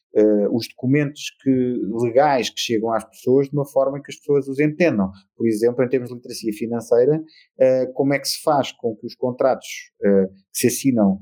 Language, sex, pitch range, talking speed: Portuguese, male, 115-145 Hz, 210 wpm